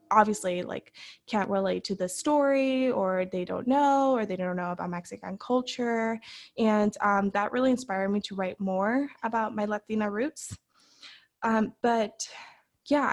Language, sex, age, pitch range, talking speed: English, female, 20-39, 185-215 Hz, 155 wpm